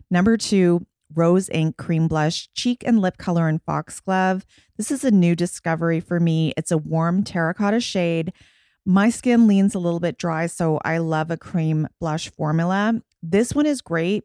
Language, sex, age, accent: English, female, 30-49, American